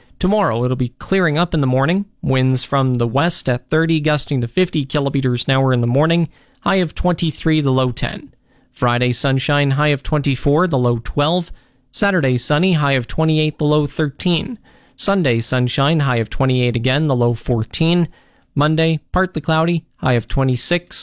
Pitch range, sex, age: 130-165 Hz, male, 40-59